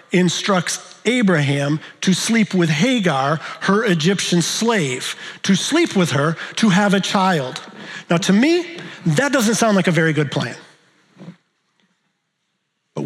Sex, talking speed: male, 135 wpm